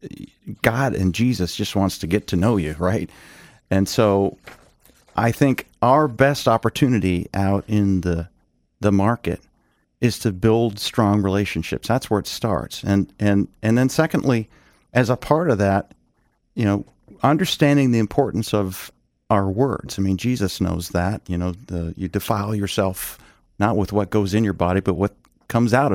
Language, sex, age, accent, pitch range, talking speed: English, male, 40-59, American, 95-125 Hz, 165 wpm